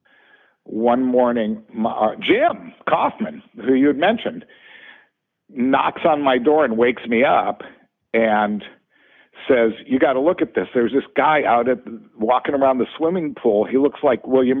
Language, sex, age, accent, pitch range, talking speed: English, male, 60-79, American, 115-150 Hz, 170 wpm